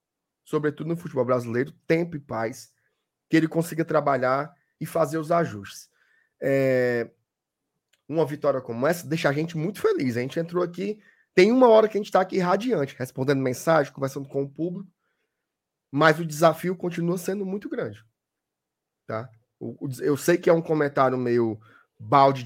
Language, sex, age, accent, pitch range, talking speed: Portuguese, male, 20-39, Brazilian, 130-165 Hz, 155 wpm